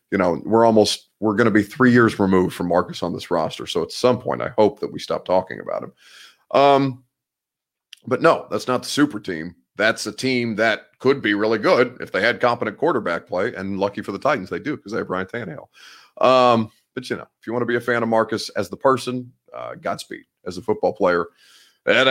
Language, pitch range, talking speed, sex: English, 115-155 Hz, 230 wpm, male